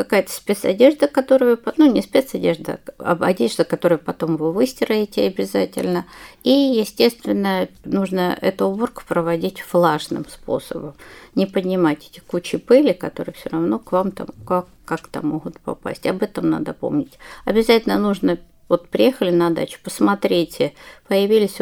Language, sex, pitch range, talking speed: Russian, female, 165-225 Hz, 135 wpm